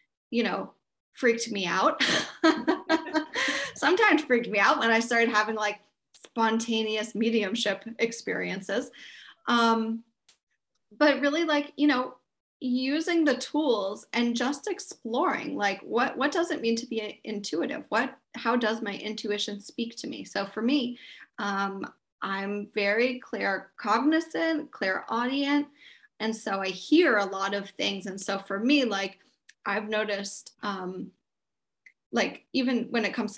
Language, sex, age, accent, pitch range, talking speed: English, female, 30-49, American, 200-250 Hz, 140 wpm